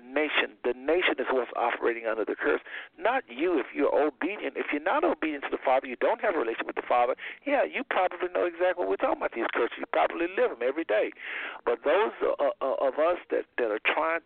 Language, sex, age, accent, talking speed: English, male, 60-79, American, 225 wpm